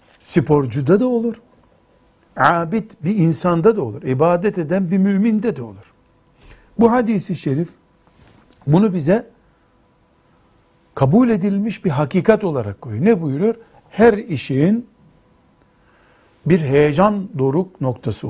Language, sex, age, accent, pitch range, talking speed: Turkish, male, 60-79, native, 145-210 Hz, 110 wpm